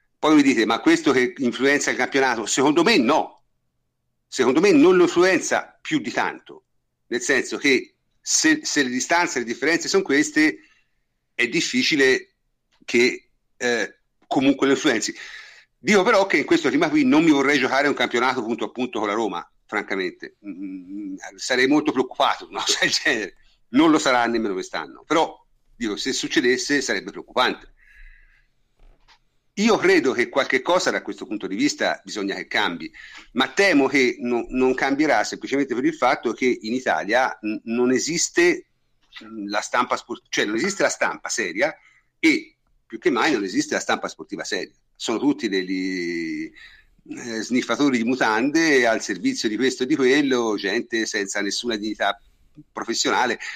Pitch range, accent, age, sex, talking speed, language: 260-355 Hz, native, 50-69, male, 160 wpm, Italian